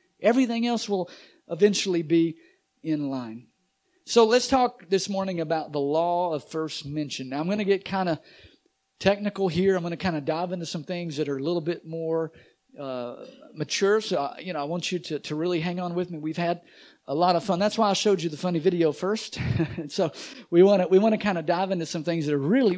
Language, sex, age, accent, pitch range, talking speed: English, male, 50-69, American, 165-215 Hz, 235 wpm